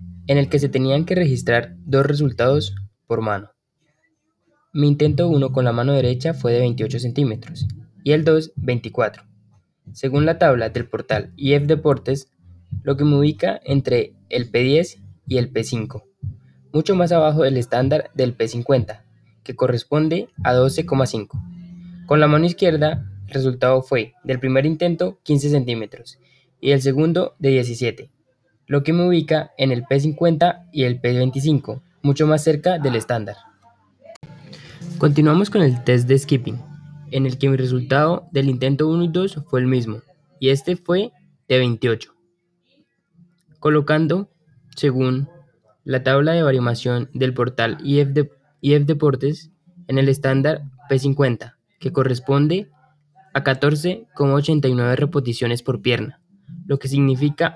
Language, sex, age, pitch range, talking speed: Spanish, male, 20-39, 125-155 Hz, 140 wpm